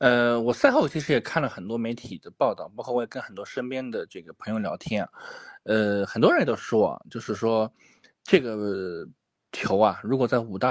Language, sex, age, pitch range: Chinese, male, 20-39, 115-170 Hz